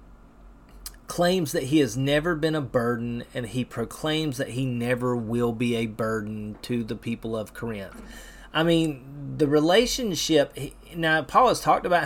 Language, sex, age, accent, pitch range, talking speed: English, male, 30-49, American, 125-160 Hz, 160 wpm